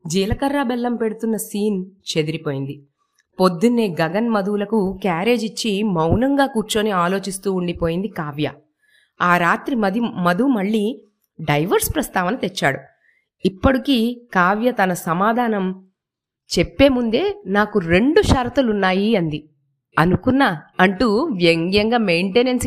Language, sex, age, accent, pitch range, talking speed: Telugu, female, 20-39, native, 175-225 Hz, 95 wpm